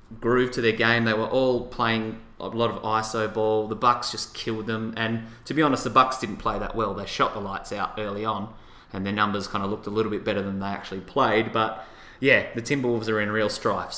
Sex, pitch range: male, 105-120 Hz